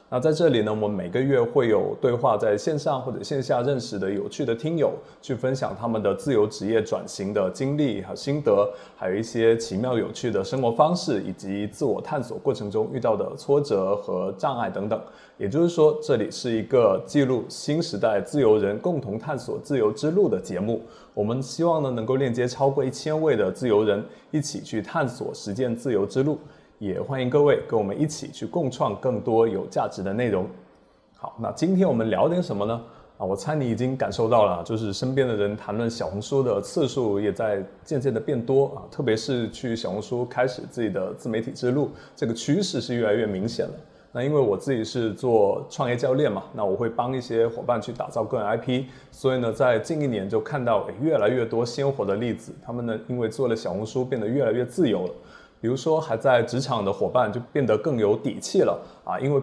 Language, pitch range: Chinese, 110-140 Hz